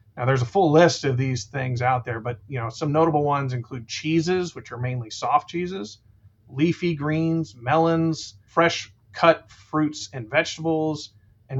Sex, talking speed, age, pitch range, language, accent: male, 165 wpm, 30-49, 115-145 Hz, English, American